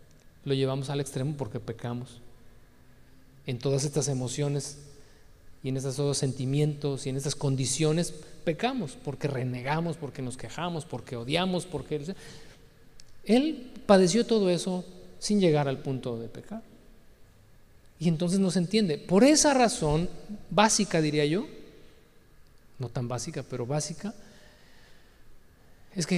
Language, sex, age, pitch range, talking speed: Spanish, male, 40-59, 130-185 Hz, 125 wpm